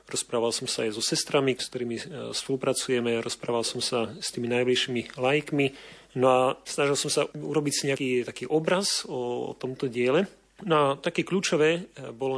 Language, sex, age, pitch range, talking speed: Slovak, male, 40-59, 125-150 Hz, 160 wpm